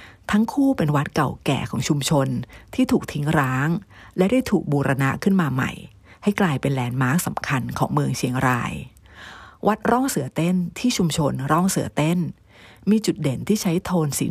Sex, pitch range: female, 135-180 Hz